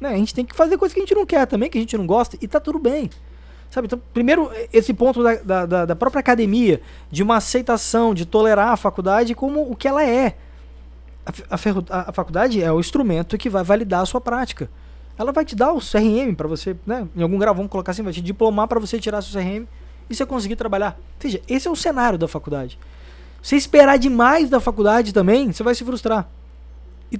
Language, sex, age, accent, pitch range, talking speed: Portuguese, male, 20-39, Brazilian, 155-235 Hz, 225 wpm